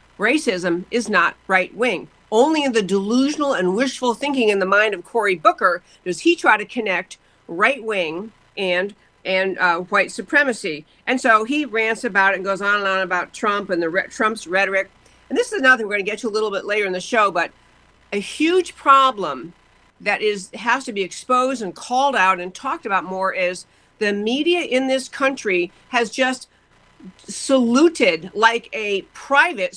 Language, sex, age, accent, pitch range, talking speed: English, female, 50-69, American, 195-255 Hz, 185 wpm